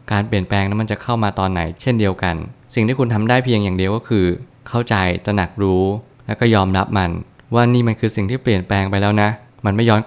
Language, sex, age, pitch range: Thai, male, 20-39, 95-120 Hz